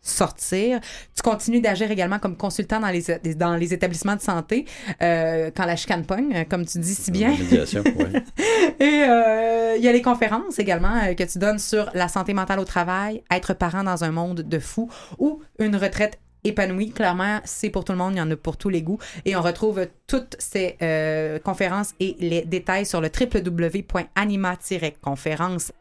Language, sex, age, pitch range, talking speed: French, female, 30-49, 180-225 Hz, 185 wpm